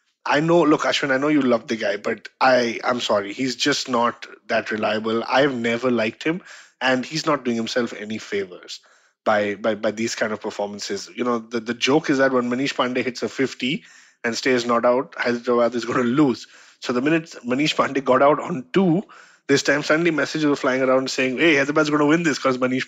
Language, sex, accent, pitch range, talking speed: English, male, Indian, 120-155 Hz, 220 wpm